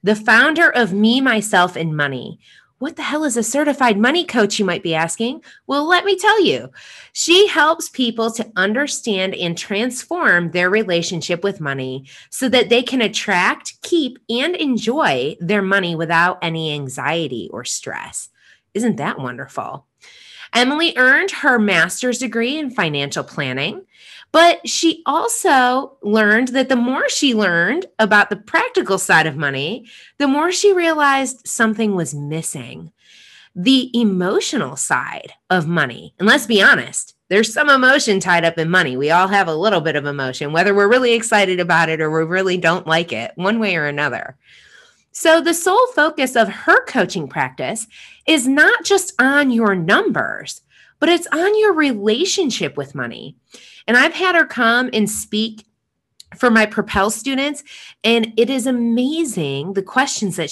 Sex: female